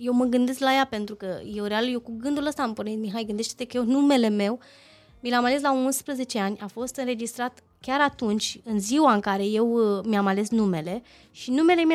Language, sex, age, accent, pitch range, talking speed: Romanian, female, 20-39, native, 225-315 Hz, 215 wpm